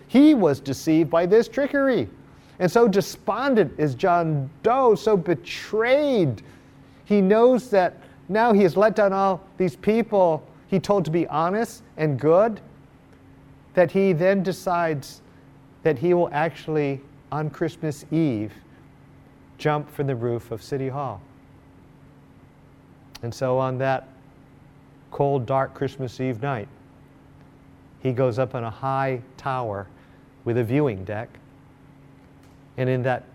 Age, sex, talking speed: 50-69, male, 130 wpm